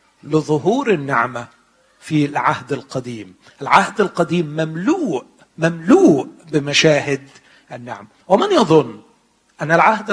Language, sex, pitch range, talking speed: Arabic, male, 140-200 Hz, 90 wpm